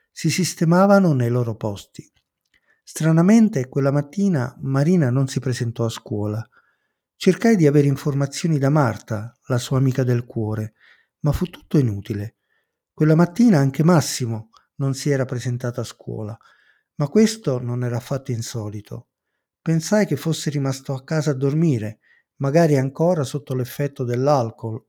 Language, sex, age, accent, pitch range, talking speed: Italian, male, 50-69, native, 120-160 Hz, 140 wpm